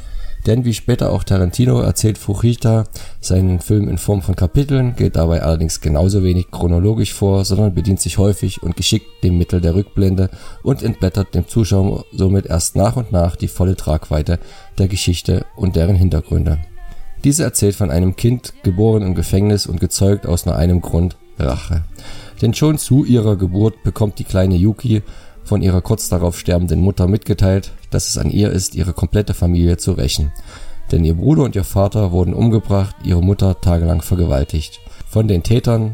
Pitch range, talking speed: 85-105 Hz, 170 wpm